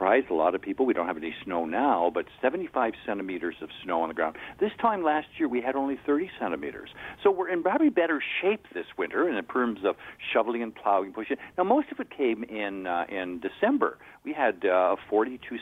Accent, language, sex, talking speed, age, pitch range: American, English, male, 210 wpm, 50-69, 105-145 Hz